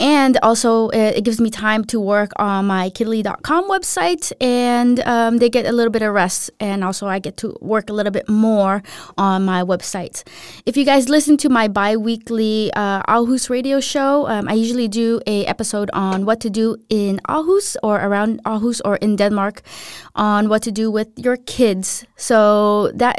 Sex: female